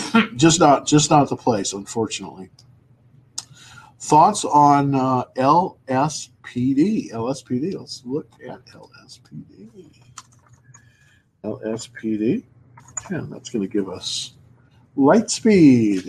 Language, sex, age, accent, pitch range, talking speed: English, male, 50-69, American, 125-150 Hz, 110 wpm